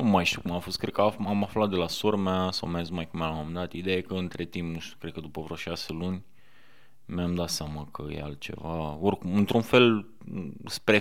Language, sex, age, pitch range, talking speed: Romanian, male, 20-39, 90-110 Hz, 235 wpm